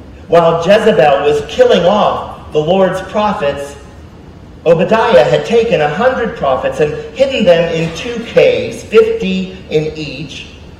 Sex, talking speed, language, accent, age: male, 130 wpm, English, American, 40-59